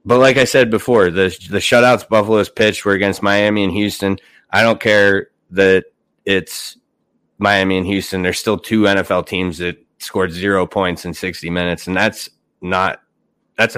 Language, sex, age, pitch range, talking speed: English, male, 30-49, 95-110 Hz, 170 wpm